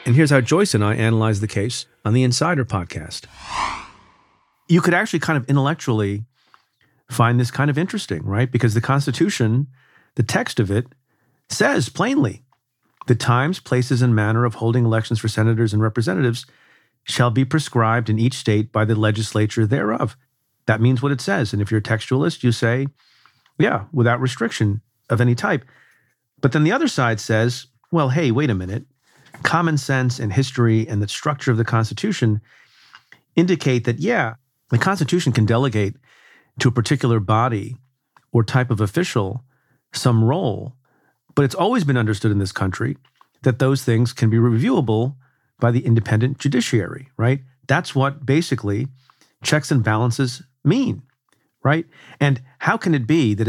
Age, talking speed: 40-59, 165 wpm